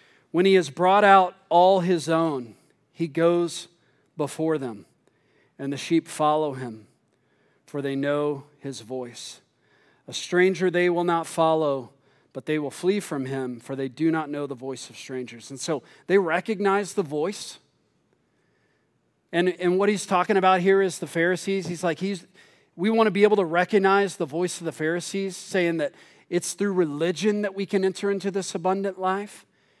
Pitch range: 160-200 Hz